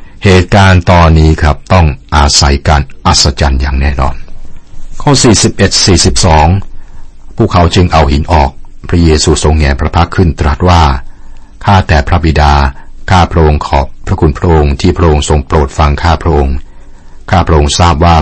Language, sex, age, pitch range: Thai, male, 60-79, 70-90 Hz